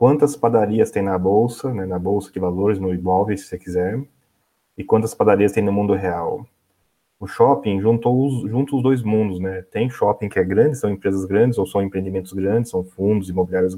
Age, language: 30-49, English